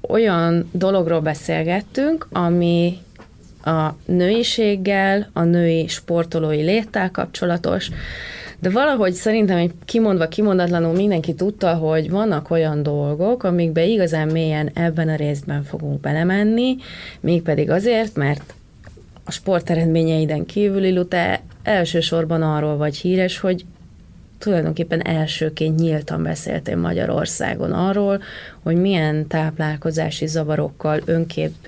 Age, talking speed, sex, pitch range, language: 30-49, 105 wpm, female, 155-190 Hz, Hungarian